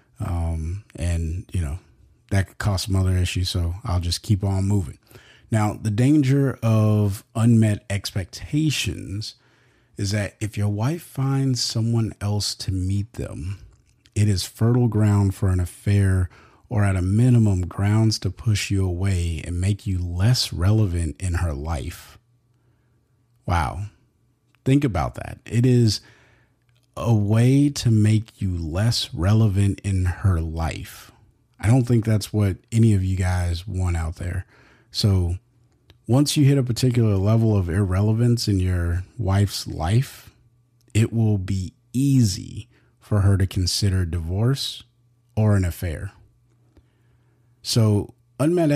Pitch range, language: 95-120 Hz, English